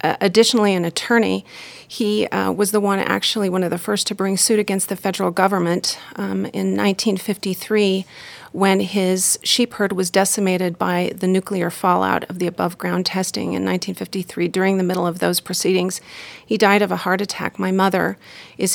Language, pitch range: English, 185-210 Hz